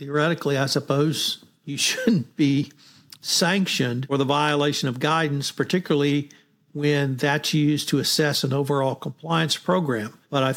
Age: 60-79